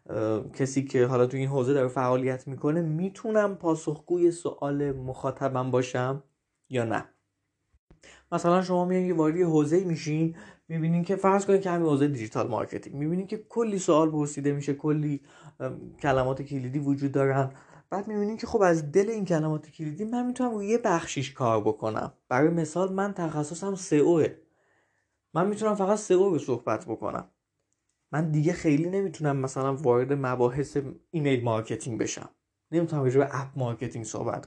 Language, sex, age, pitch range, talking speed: Persian, male, 20-39, 135-180 Hz, 145 wpm